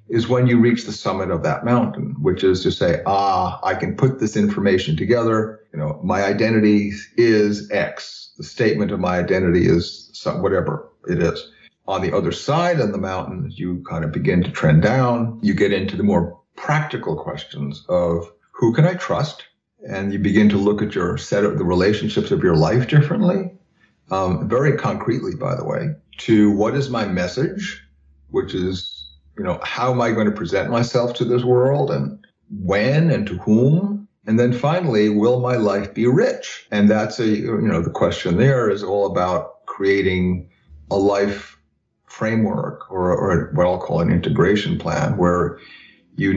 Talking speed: 180 wpm